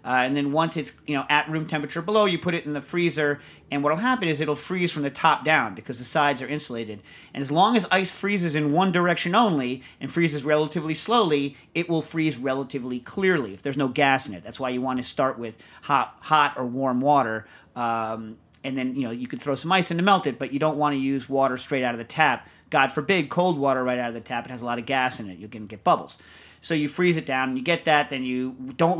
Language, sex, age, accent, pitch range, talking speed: English, male, 40-59, American, 135-170 Hz, 265 wpm